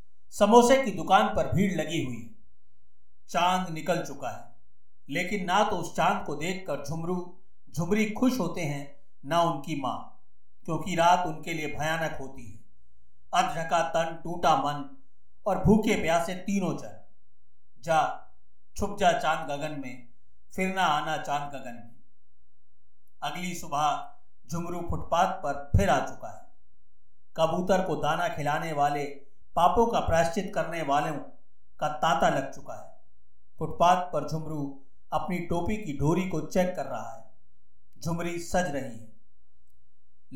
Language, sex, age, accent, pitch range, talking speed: Hindi, male, 50-69, native, 140-180 Hz, 140 wpm